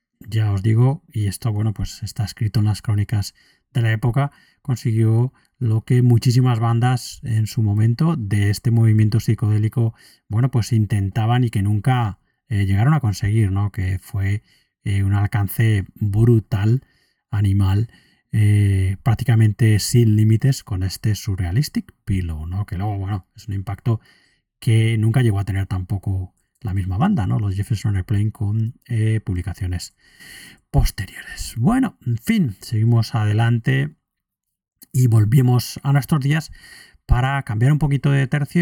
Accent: Spanish